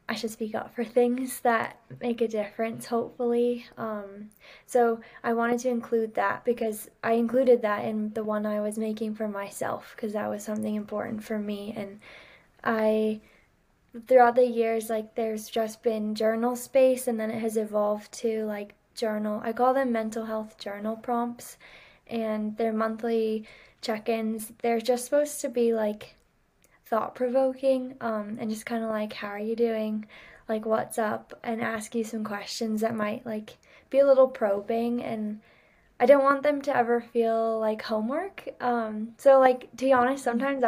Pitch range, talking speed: 215-240 Hz, 170 wpm